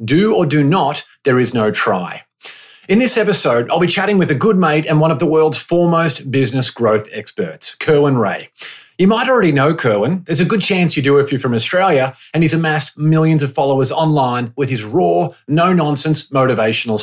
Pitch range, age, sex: 130-175 Hz, 30-49, male